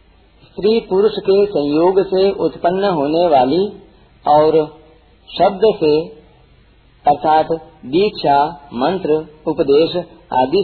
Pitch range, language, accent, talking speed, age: 150-200 Hz, Hindi, native, 85 wpm, 50-69